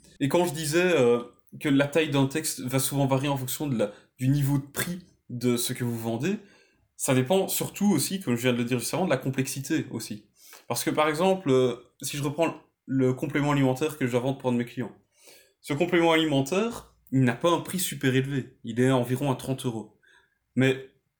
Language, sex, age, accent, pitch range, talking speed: French, male, 20-39, French, 125-160 Hz, 220 wpm